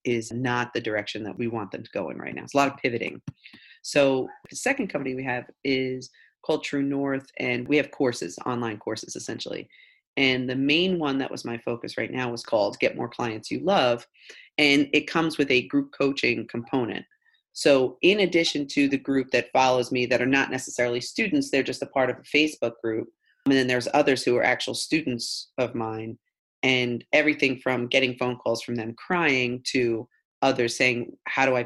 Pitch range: 120-140 Hz